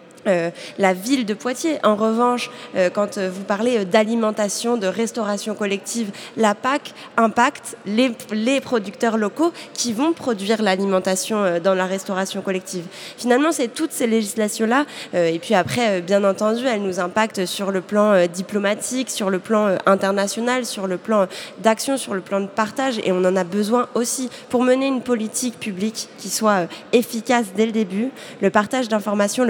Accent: French